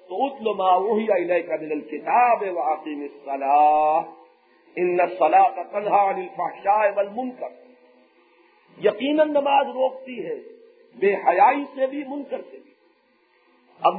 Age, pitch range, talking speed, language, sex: 50-69, 195-255 Hz, 110 wpm, English, male